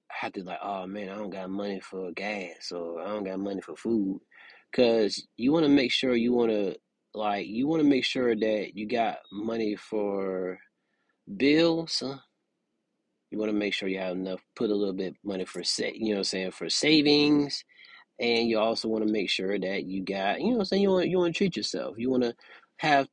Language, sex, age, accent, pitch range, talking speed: English, male, 30-49, American, 105-145 Hz, 235 wpm